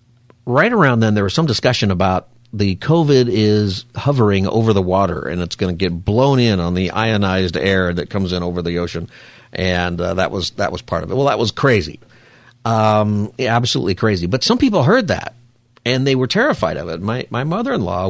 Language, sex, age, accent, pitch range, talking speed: English, male, 50-69, American, 100-125 Hz, 210 wpm